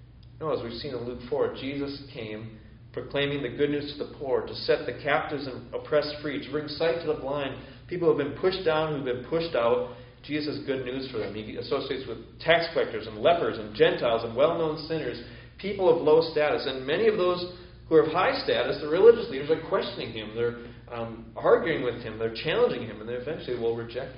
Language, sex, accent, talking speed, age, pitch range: English, male, American, 225 wpm, 40-59, 125-170 Hz